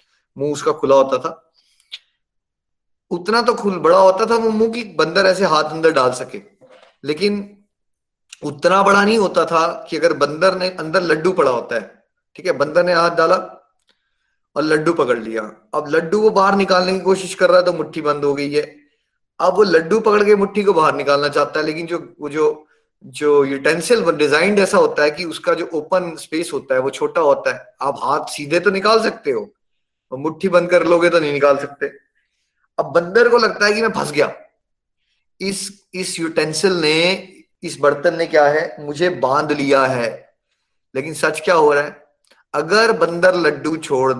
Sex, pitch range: male, 145-195 Hz